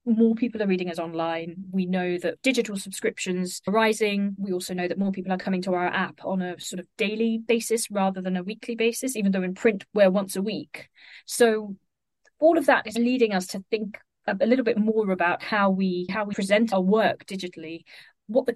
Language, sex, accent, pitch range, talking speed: English, female, British, 185-220 Hz, 215 wpm